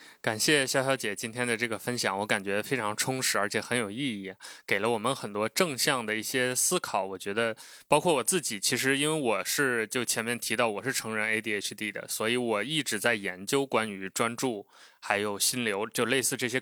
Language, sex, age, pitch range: Chinese, male, 20-39, 110-130 Hz